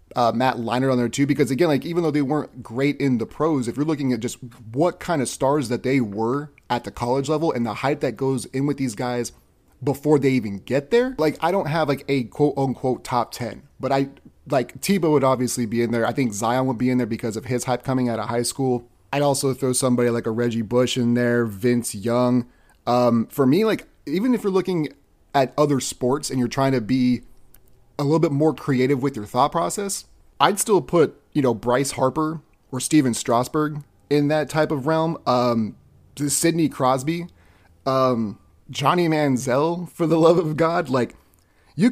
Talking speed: 210 wpm